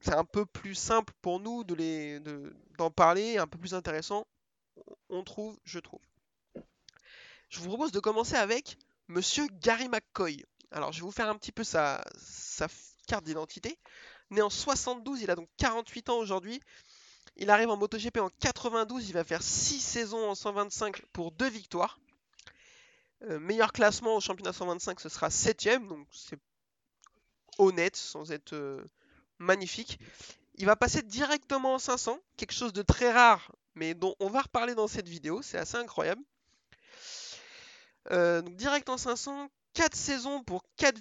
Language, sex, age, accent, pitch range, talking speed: French, male, 20-39, French, 185-245 Hz, 165 wpm